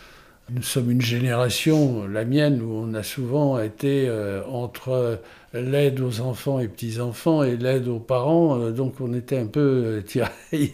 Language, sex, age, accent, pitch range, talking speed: French, male, 60-79, French, 120-150 Hz, 170 wpm